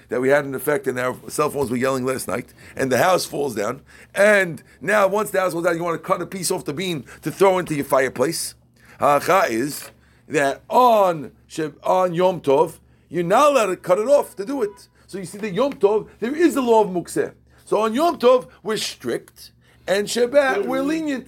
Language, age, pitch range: English, 50-69, 140-210 Hz